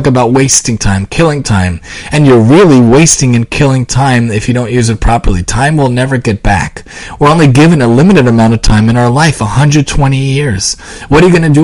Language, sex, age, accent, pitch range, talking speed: English, male, 30-49, American, 115-150 Hz, 215 wpm